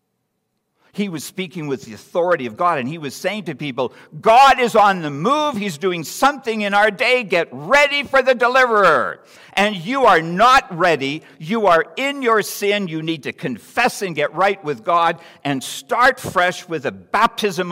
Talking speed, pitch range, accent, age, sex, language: 185 wpm, 125-195 Hz, American, 60-79, male, English